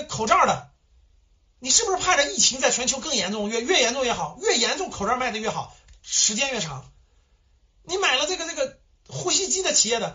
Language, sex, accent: Chinese, male, native